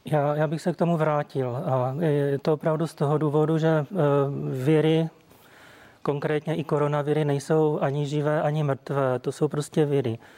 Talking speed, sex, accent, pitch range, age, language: 170 wpm, male, native, 140-155 Hz, 30-49, Czech